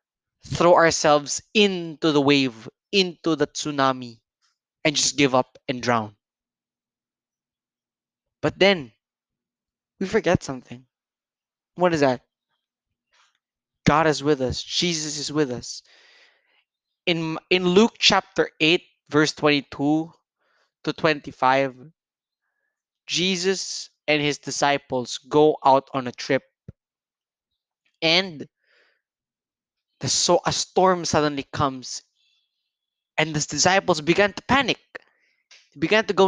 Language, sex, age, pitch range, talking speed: English, male, 20-39, 140-180 Hz, 105 wpm